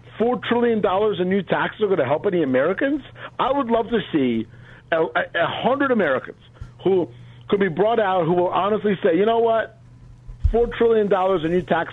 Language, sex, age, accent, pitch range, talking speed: English, male, 50-69, American, 135-185 Hz, 175 wpm